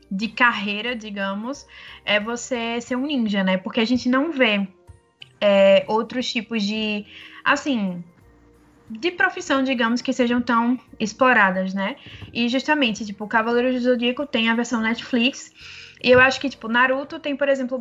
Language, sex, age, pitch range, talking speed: Portuguese, female, 20-39, 200-240 Hz, 150 wpm